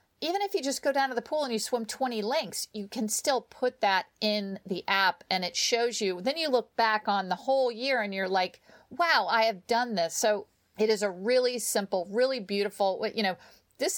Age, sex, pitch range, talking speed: 50-69, female, 190-245 Hz, 230 wpm